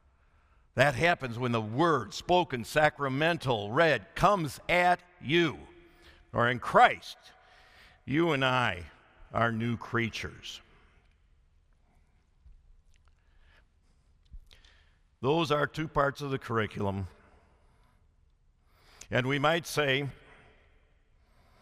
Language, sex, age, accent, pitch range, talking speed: English, male, 60-79, American, 75-125 Hz, 85 wpm